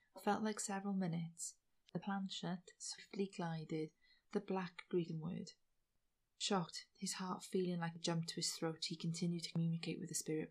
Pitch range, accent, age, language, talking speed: 160-195 Hz, British, 30-49, English, 165 wpm